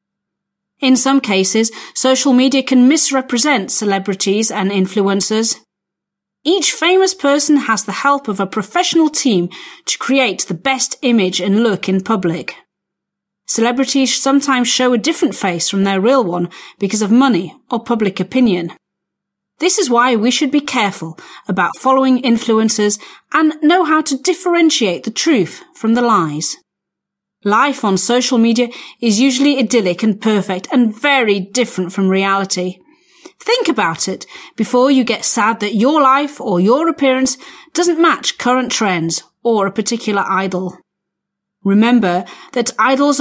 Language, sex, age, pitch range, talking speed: Slovak, female, 40-59, 195-275 Hz, 145 wpm